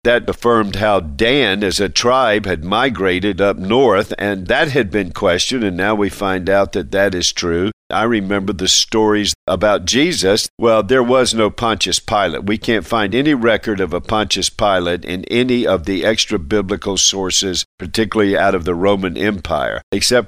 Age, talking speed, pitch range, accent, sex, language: 50-69, 180 wpm, 95-120 Hz, American, male, English